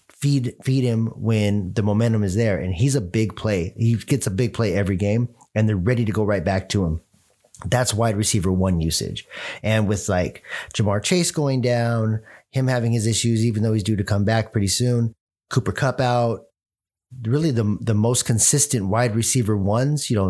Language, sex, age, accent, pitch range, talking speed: English, male, 30-49, American, 100-120 Hz, 200 wpm